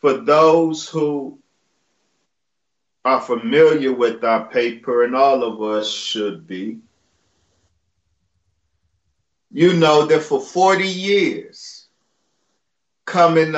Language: English